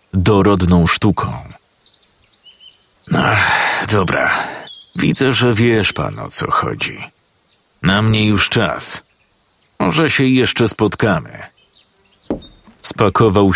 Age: 40-59